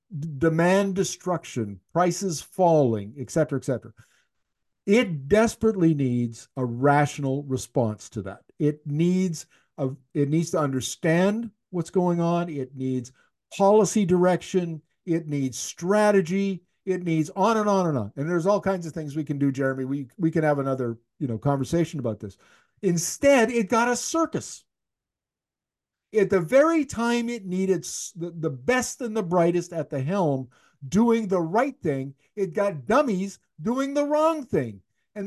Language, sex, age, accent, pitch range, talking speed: English, male, 50-69, American, 145-210 Hz, 155 wpm